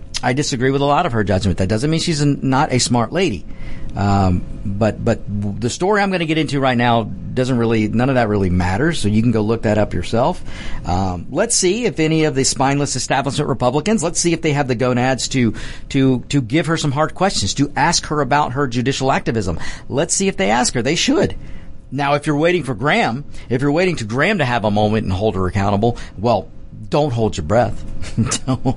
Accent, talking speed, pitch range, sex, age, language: American, 230 wpm, 100-140 Hz, male, 50-69, English